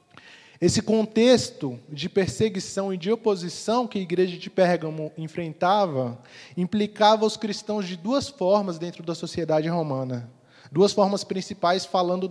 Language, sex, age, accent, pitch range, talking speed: Portuguese, male, 20-39, Brazilian, 170-205 Hz, 130 wpm